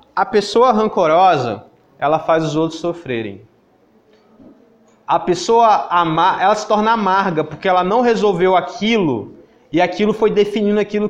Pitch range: 160-215 Hz